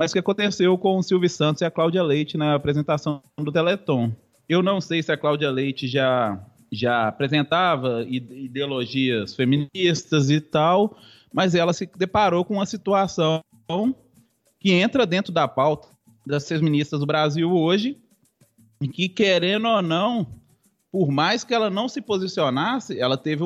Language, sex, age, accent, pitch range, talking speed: Portuguese, male, 20-39, Brazilian, 150-205 Hz, 155 wpm